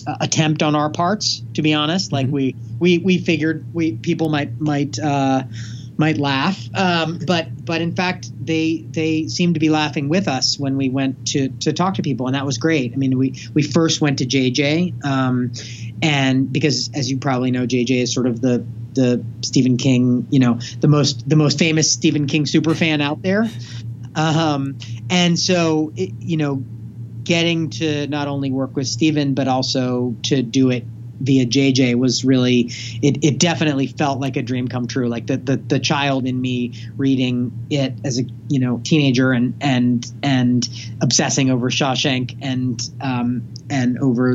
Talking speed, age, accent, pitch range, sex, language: 185 wpm, 30-49, American, 125-150 Hz, male, English